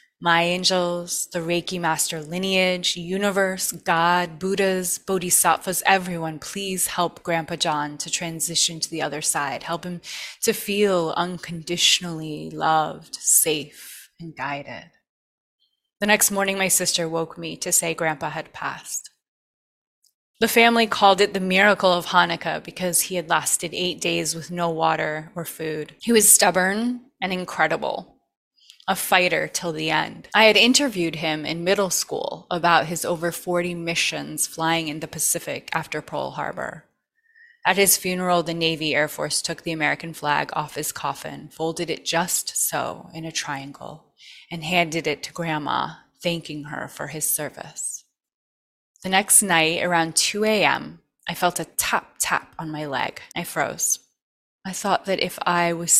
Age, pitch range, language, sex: 20-39, 160-190 Hz, English, female